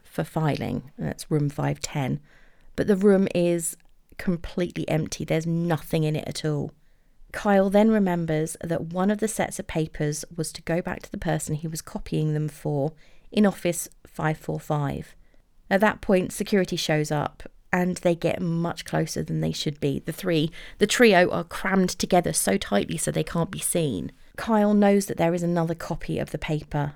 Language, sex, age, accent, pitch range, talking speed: English, female, 30-49, British, 150-185 Hz, 180 wpm